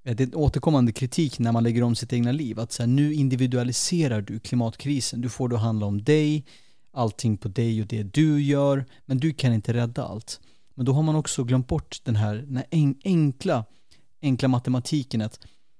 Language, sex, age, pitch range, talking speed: Swedish, male, 30-49, 115-140 Hz, 200 wpm